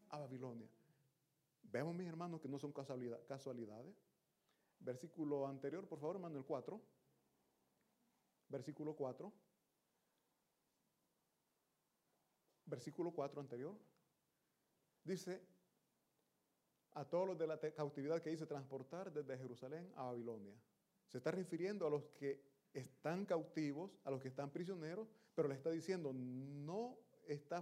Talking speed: 115 wpm